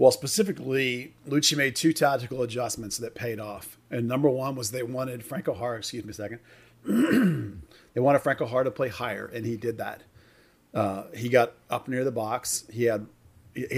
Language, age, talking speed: English, 40-59, 185 wpm